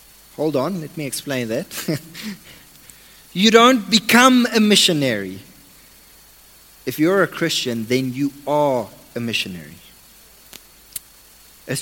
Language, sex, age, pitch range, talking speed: English, male, 30-49, 130-170 Hz, 105 wpm